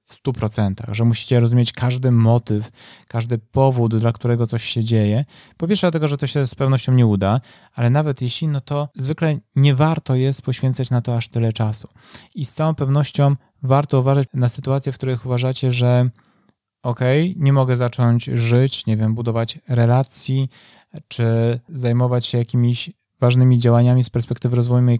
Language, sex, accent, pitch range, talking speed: Polish, male, native, 115-140 Hz, 170 wpm